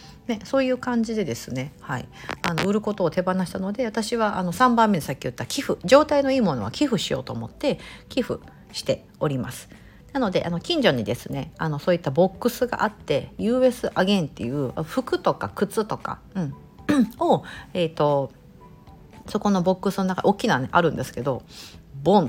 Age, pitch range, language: 50-69, 150-210 Hz, Japanese